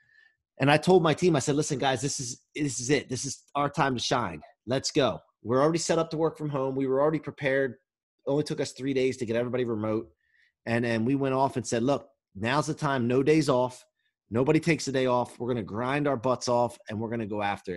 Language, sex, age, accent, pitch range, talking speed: English, male, 30-49, American, 105-145 Hz, 255 wpm